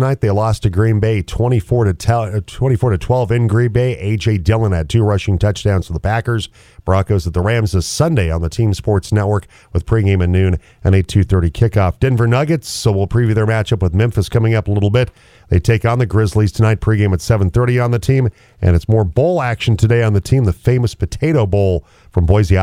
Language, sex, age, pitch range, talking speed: English, male, 40-59, 95-115 Hz, 215 wpm